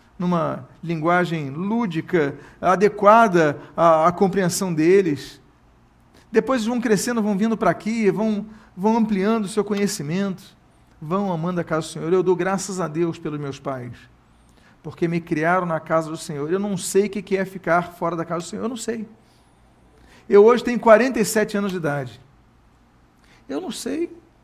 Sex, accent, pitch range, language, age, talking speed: male, Brazilian, 165-225 Hz, Portuguese, 40-59, 165 wpm